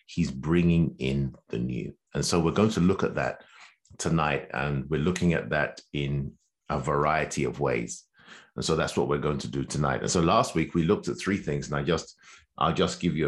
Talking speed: 215 wpm